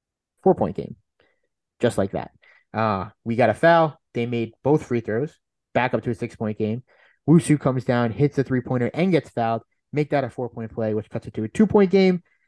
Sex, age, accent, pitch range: male, 20-39, American, 110-140 Hz